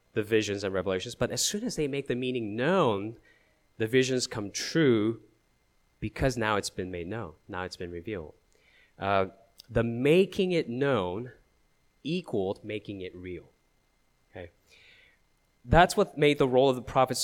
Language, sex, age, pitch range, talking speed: English, male, 30-49, 100-155 Hz, 155 wpm